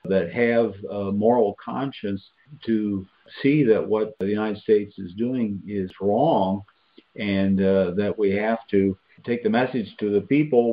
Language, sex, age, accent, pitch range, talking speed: English, male, 50-69, American, 105-135 Hz, 155 wpm